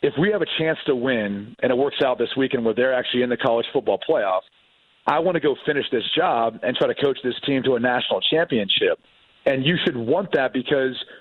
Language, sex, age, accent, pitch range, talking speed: English, male, 40-59, American, 130-155 Hz, 235 wpm